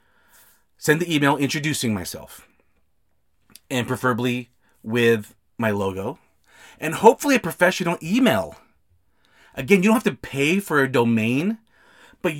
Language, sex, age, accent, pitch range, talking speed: English, male, 30-49, American, 115-165 Hz, 120 wpm